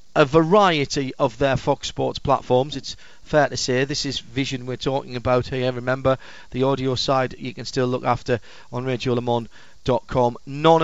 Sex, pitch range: male, 130-170 Hz